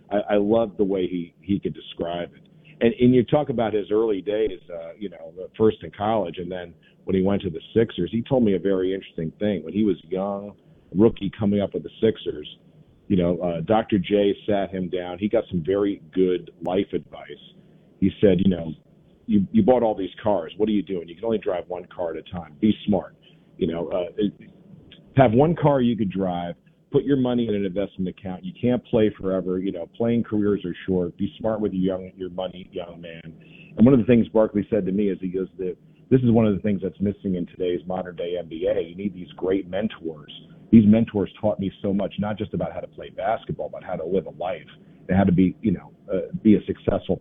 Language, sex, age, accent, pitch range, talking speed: English, male, 40-59, American, 90-110 Hz, 235 wpm